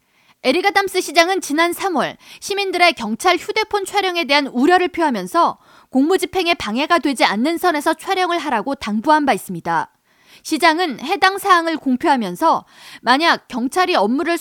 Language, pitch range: Korean, 255-350 Hz